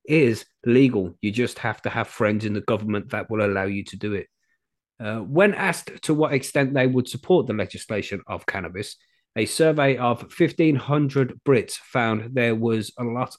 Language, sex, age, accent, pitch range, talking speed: English, male, 30-49, British, 105-135 Hz, 185 wpm